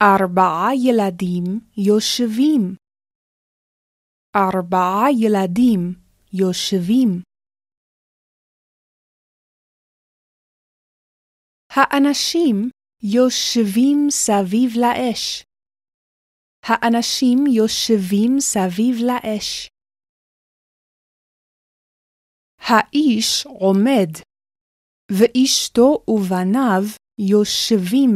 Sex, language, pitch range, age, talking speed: female, Hebrew, 195-255 Hz, 20-39, 40 wpm